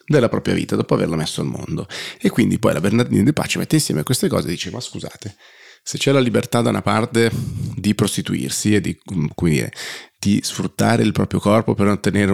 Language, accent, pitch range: Italian, native, 95-110 Hz